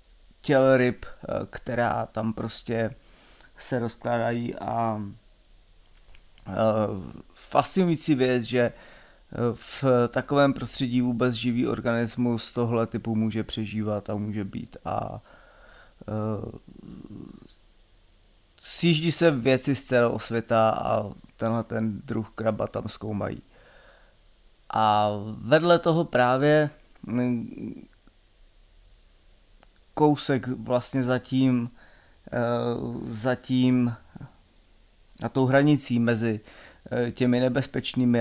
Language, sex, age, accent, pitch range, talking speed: Czech, male, 20-39, native, 110-130 Hz, 85 wpm